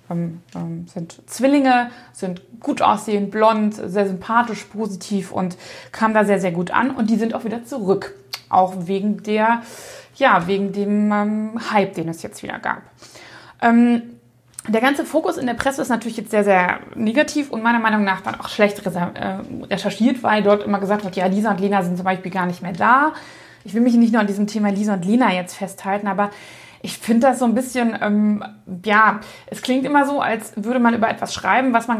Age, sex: 20-39, female